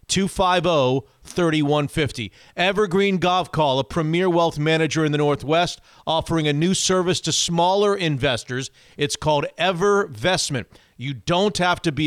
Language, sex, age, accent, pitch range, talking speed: English, male, 40-59, American, 145-185 Hz, 125 wpm